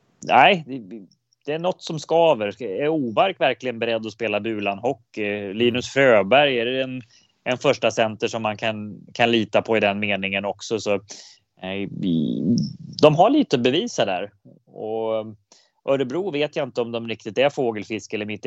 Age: 20-39